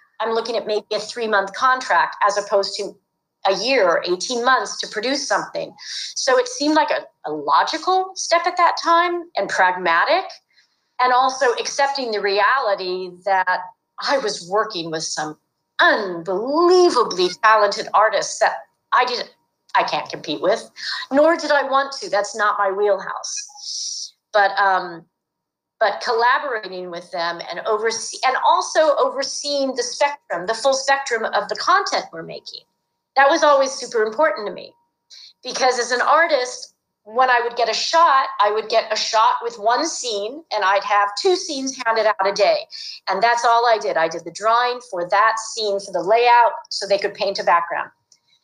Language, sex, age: English, female, 40-59